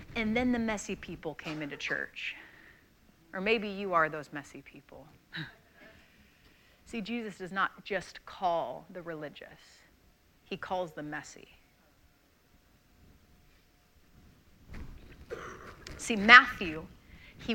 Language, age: English, 30-49